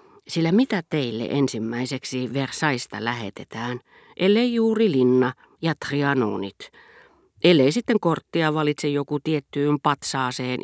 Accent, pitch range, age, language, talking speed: native, 130-175 Hz, 40-59, Finnish, 100 wpm